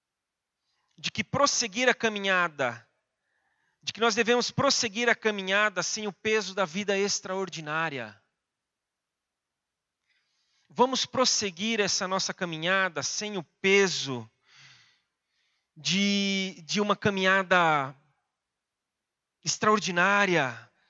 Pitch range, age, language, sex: 185-225 Hz, 40-59, Portuguese, male